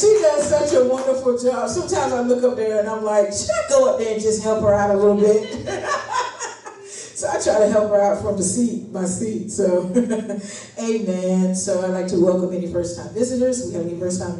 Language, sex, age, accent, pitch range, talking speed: English, female, 40-59, American, 180-235 Hz, 225 wpm